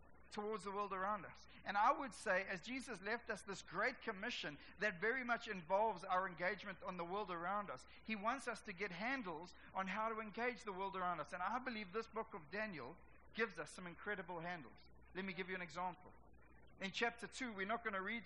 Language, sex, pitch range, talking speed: English, male, 190-240 Hz, 220 wpm